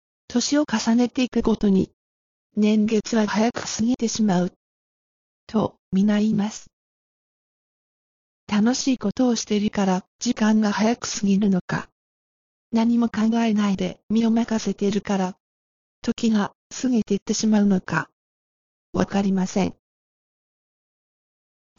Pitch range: 200-235 Hz